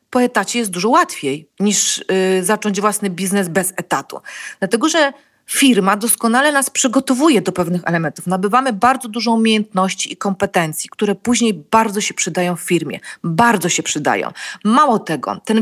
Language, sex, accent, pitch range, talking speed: Polish, female, native, 180-235 Hz, 150 wpm